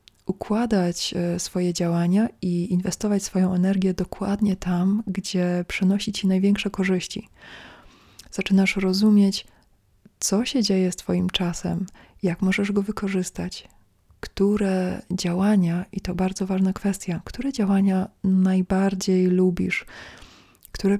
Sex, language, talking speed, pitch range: female, Polish, 110 wpm, 175-195 Hz